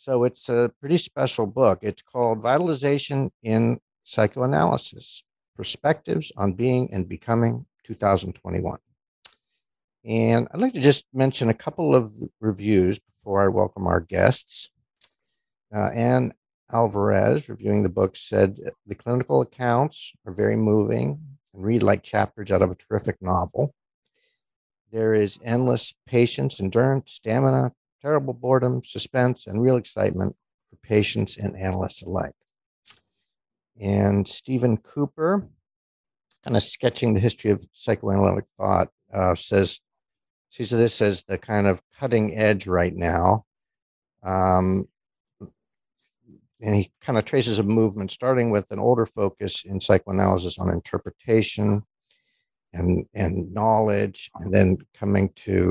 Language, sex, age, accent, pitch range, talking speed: English, male, 50-69, American, 95-125 Hz, 130 wpm